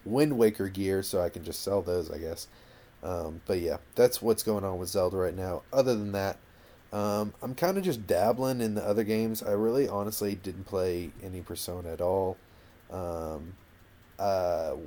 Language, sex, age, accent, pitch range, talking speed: English, male, 30-49, American, 90-110 Hz, 185 wpm